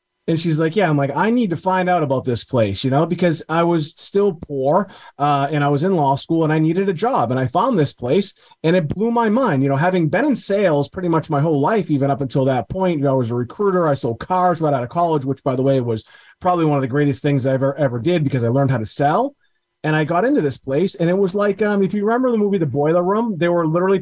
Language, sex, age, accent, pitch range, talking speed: English, male, 30-49, American, 145-200 Hz, 280 wpm